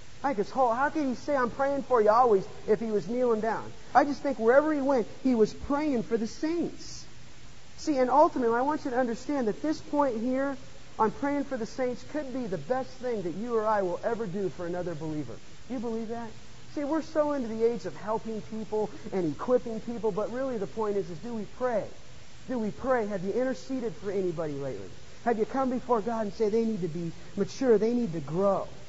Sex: male